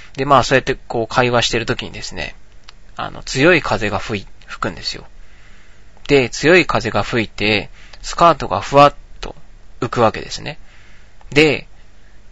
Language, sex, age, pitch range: Japanese, male, 20-39, 100-125 Hz